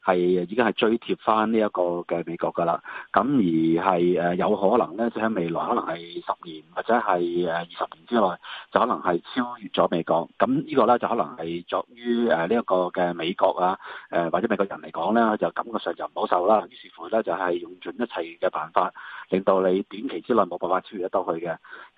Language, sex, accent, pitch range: Chinese, male, native, 90-110 Hz